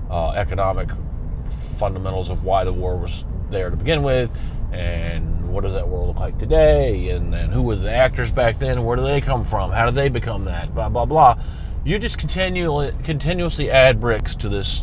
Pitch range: 85-120 Hz